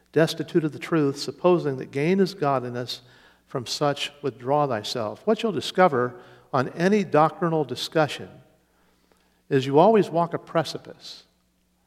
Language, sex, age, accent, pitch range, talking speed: English, male, 50-69, American, 130-170 Hz, 130 wpm